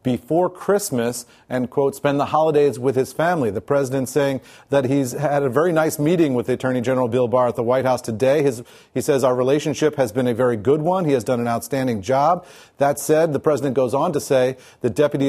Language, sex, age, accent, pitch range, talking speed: English, male, 40-59, American, 125-145 Hz, 225 wpm